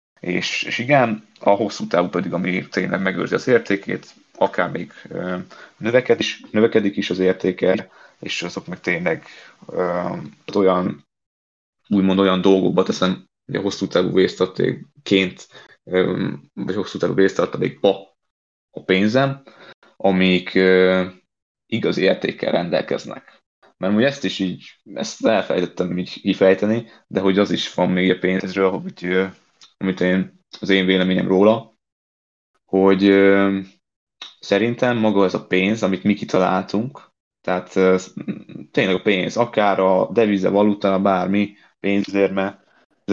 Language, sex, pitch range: Hungarian, male, 90-100 Hz